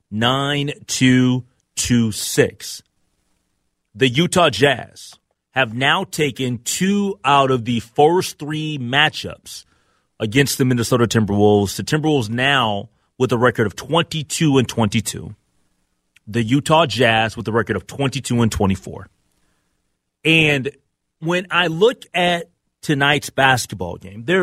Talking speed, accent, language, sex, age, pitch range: 105 wpm, American, English, male, 30-49, 115-170 Hz